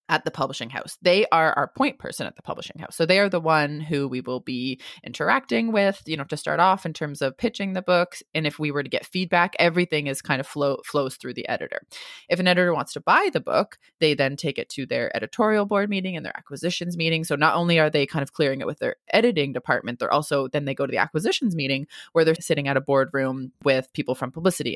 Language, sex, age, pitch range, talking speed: English, female, 20-39, 145-195 Hz, 250 wpm